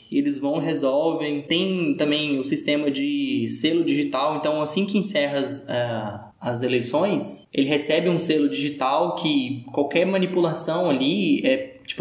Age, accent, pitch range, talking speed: 20-39, Brazilian, 140-185 Hz, 145 wpm